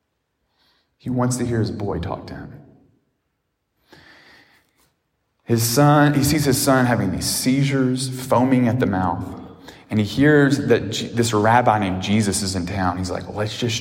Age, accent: 30-49, American